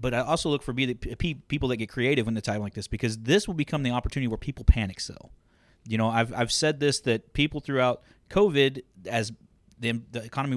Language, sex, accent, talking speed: English, male, American, 235 wpm